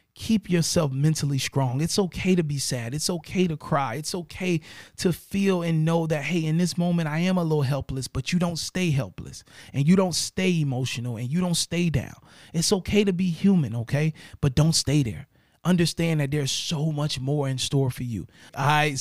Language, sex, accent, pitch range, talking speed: English, male, American, 135-200 Hz, 210 wpm